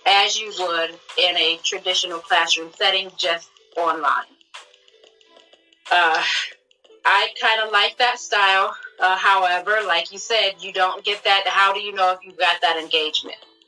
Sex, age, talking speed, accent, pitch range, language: female, 30-49, 155 wpm, American, 165-245 Hz, English